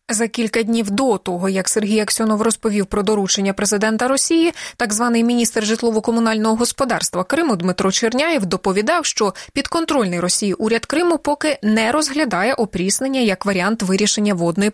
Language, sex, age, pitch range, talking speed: Russian, female, 20-39, 195-265 Hz, 145 wpm